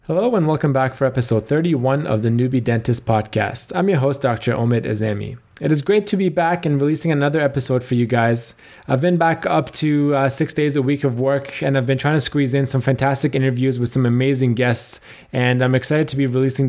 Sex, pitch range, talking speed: male, 125-150 Hz, 225 wpm